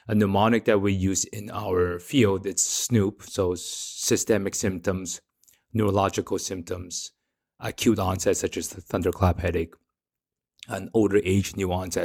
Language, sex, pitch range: English, male, 90-110 Hz